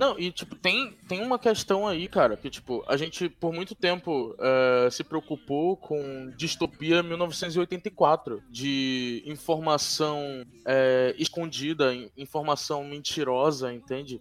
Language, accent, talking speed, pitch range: Portuguese, Brazilian, 125 wpm, 135-175 Hz